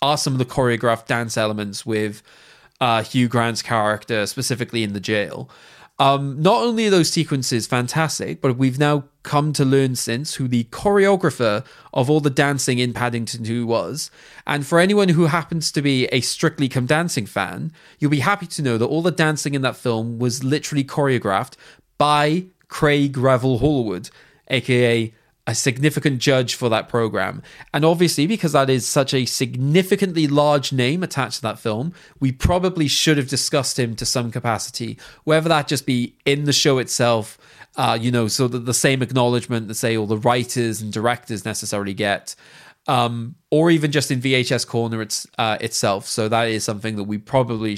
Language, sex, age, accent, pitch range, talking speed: English, male, 20-39, British, 115-150 Hz, 180 wpm